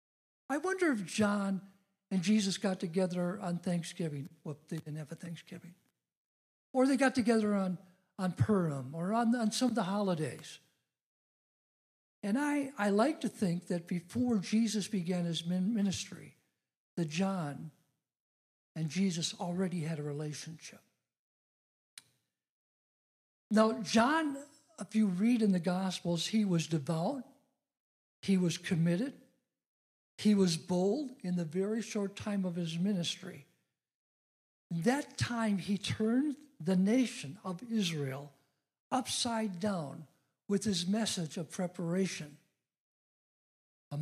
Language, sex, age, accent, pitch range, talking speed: English, male, 60-79, American, 170-215 Hz, 125 wpm